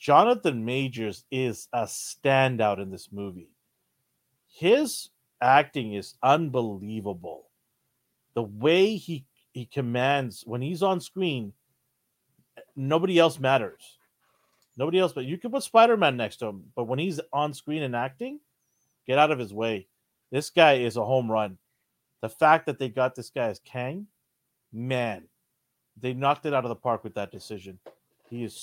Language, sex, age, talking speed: English, male, 40-59, 155 wpm